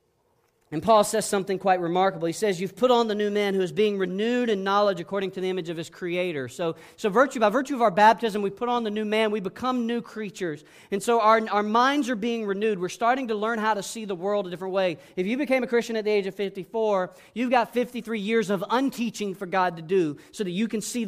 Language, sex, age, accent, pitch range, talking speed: English, male, 40-59, American, 180-230 Hz, 255 wpm